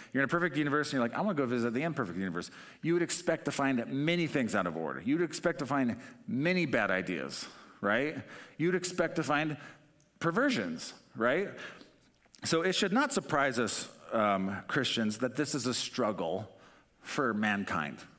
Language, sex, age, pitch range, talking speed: English, male, 40-59, 105-150 Hz, 185 wpm